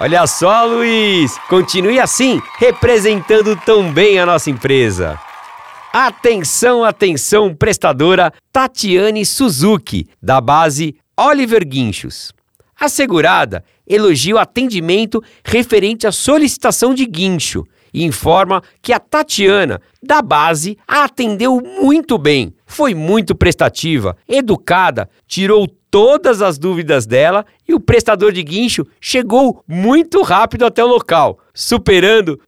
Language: Portuguese